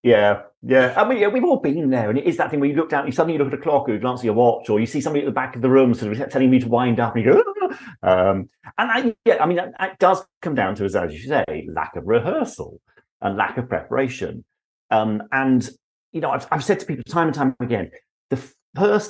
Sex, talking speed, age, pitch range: male, 275 wpm, 40-59, 110-155 Hz